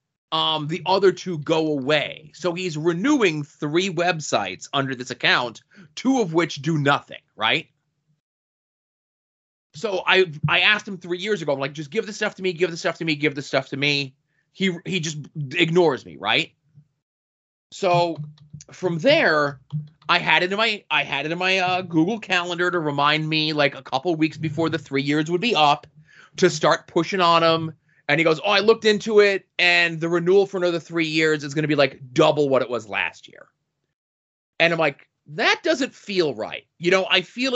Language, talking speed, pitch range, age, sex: English, 200 wpm, 145-180 Hz, 30-49, male